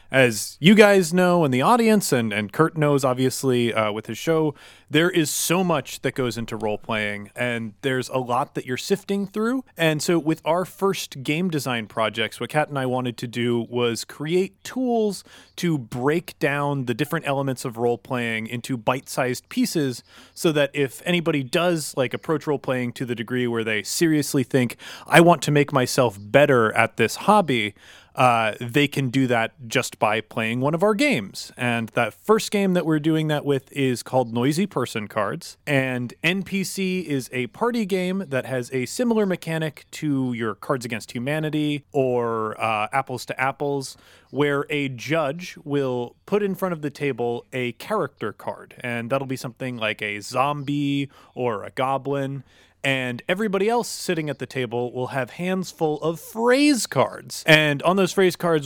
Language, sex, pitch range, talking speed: English, male, 120-165 Hz, 180 wpm